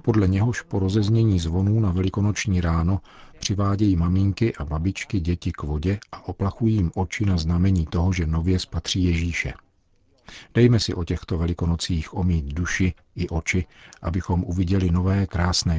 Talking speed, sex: 150 wpm, male